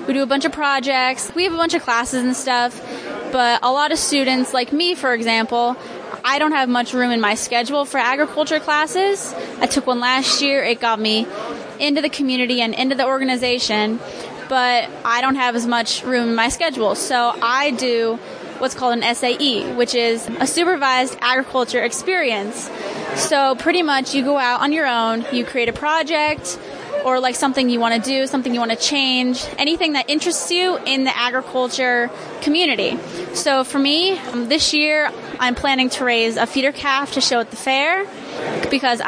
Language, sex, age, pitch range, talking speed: English, female, 20-39, 245-285 Hz, 190 wpm